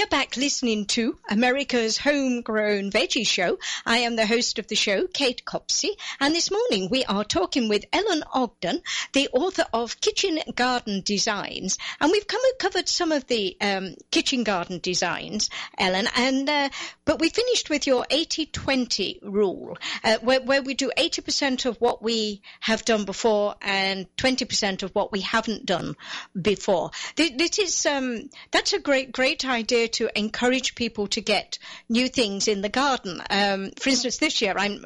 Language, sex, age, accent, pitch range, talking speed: English, female, 50-69, British, 205-275 Hz, 170 wpm